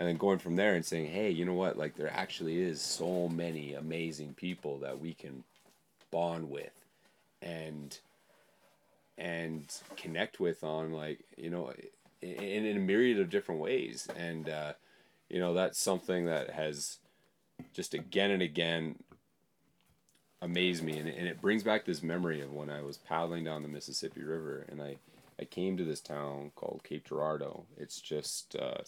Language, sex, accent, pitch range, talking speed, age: English, male, American, 75-95 Hz, 170 wpm, 30-49